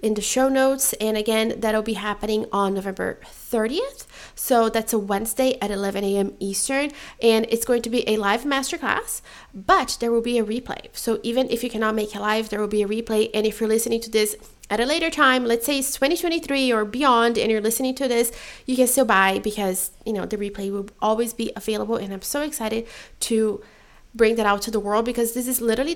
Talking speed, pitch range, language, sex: 215 wpm, 205-245 Hz, English, female